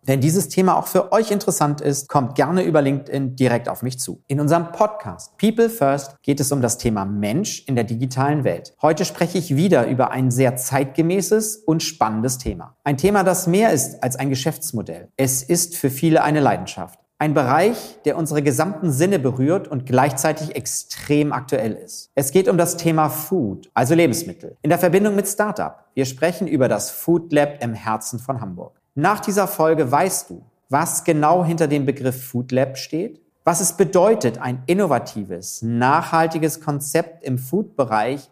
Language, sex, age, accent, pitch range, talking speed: German, male, 40-59, German, 130-170 Hz, 175 wpm